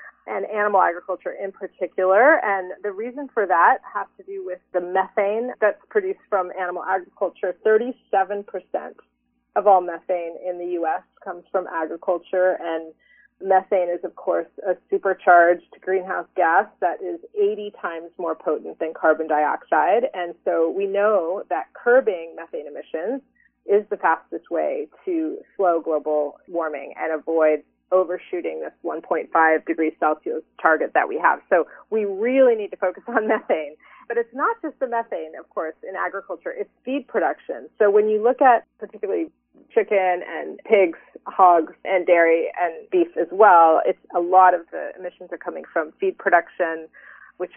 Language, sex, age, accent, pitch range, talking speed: English, female, 30-49, American, 175-230 Hz, 160 wpm